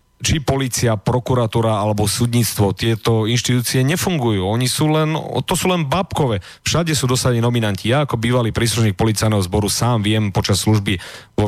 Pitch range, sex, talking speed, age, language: 105-125 Hz, male, 155 wpm, 40-59, Slovak